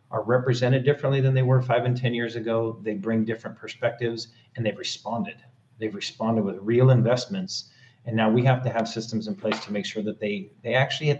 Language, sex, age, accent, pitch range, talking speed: English, male, 40-59, American, 105-125 Hz, 215 wpm